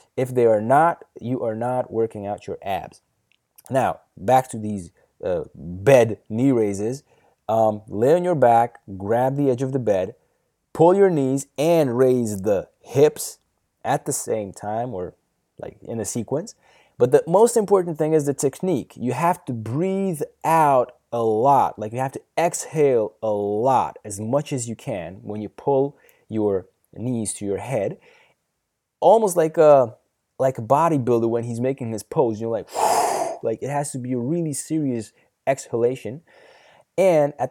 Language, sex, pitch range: English, male, 115-155 Hz